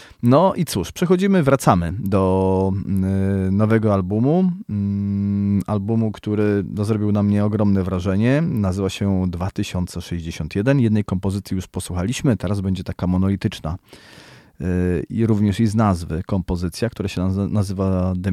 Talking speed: 120 wpm